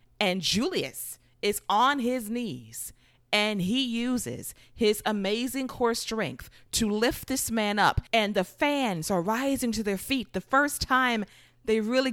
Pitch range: 165-230 Hz